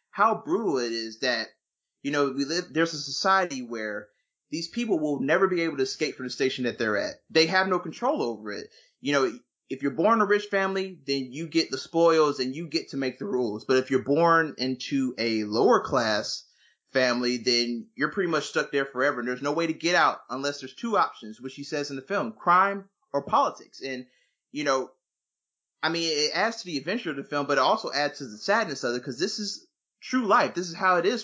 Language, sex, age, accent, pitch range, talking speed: English, male, 30-49, American, 130-170 Hz, 230 wpm